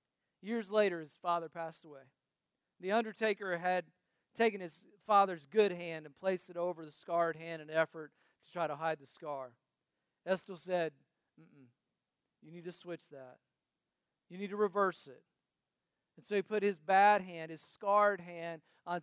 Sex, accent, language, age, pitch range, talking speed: male, American, English, 40-59, 155-190 Hz, 175 wpm